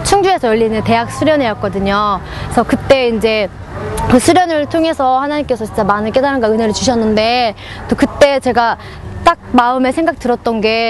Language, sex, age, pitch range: Korean, female, 20-39, 225-285 Hz